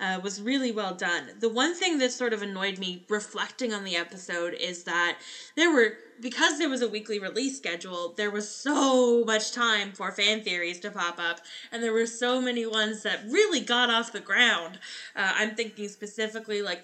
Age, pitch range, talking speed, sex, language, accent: 10-29, 210-255 Hz, 200 wpm, female, English, American